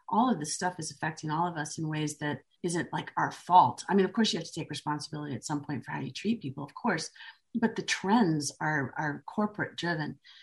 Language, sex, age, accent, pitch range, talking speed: English, female, 40-59, American, 150-220 Hz, 240 wpm